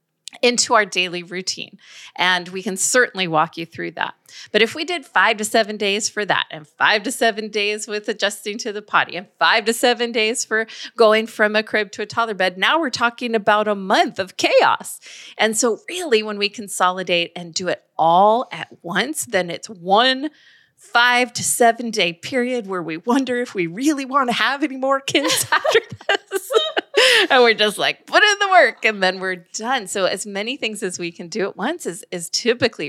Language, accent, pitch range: English, American, 175-235 Hz